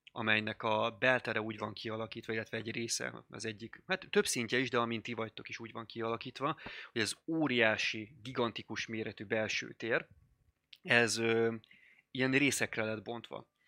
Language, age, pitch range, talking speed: Hungarian, 20-39, 105-115 Hz, 160 wpm